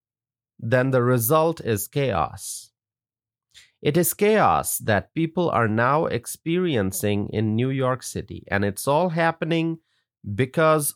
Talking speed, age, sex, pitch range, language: 120 wpm, 30-49, male, 115-165 Hz, English